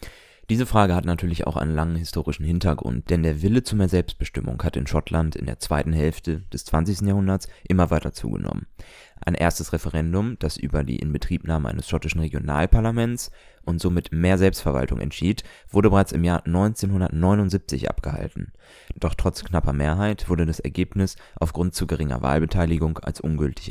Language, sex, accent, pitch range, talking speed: German, male, German, 75-90 Hz, 155 wpm